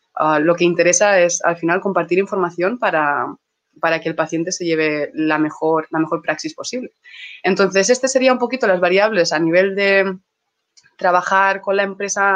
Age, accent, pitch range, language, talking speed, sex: 20-39, Spanish, 165-205 Hz, Spanish, 175 wpm, female